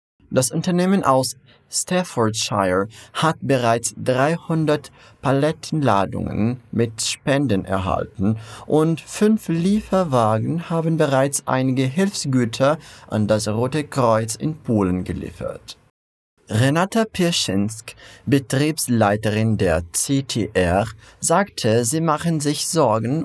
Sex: male